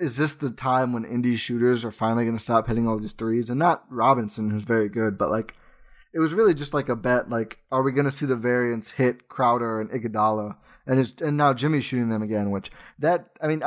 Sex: male